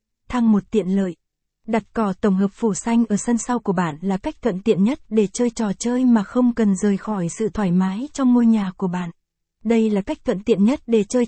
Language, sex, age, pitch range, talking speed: Vietnamese, female, 20-39, 200-235 Hz, 240 wpm